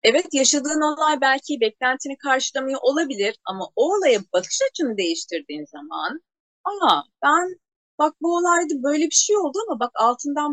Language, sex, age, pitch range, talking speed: Turkish, female, 40-59, 200-295 Hz, 150 wpm